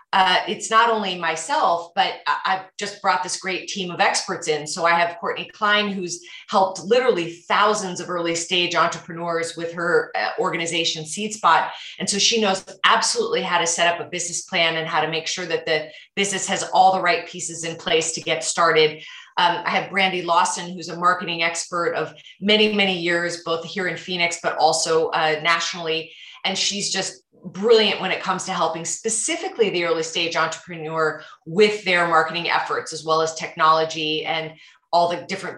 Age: 30-49